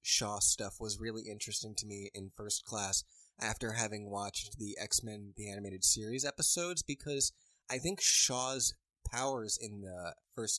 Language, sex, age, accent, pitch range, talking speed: English, male, 20-39, American, 100-125 Hz, 155 wpm